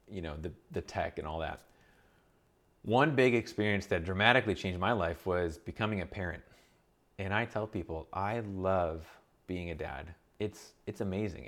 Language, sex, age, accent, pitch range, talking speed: English, male, 30-49, American, 85-110 Hz, 165 wpm